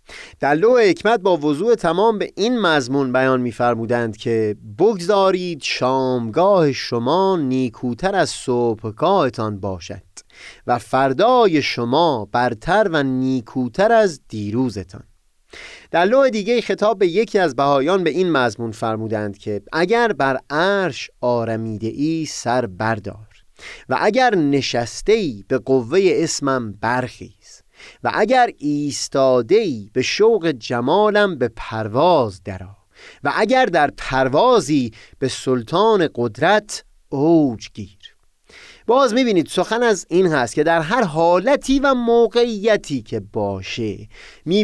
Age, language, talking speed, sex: 30-49, Persian, 120 wpm, male